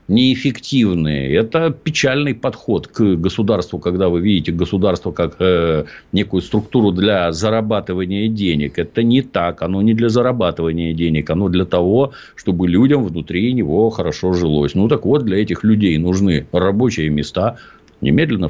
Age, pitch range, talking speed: 50-69, 85-110 Hz, 140 wpm